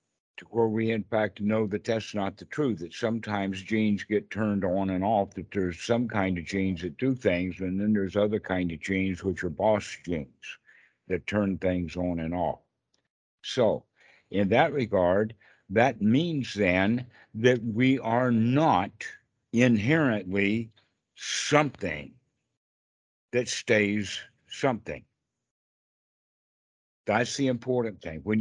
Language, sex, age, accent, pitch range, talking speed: English, male, 60-79, American, 95-120 Hz, 135 wpm